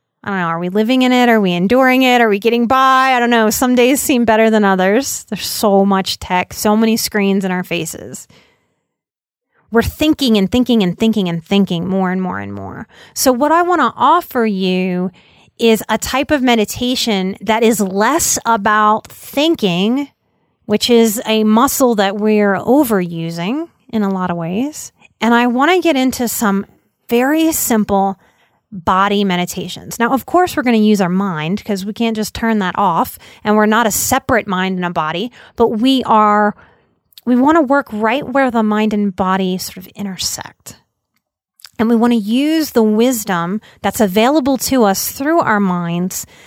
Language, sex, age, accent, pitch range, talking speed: English, female, 30-49, American, 200-255 Hz, 185 wpm